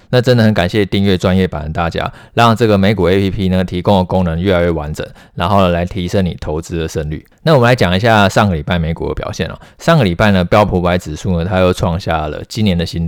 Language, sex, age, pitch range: Chinese, male, 20-39, 85-105 Hz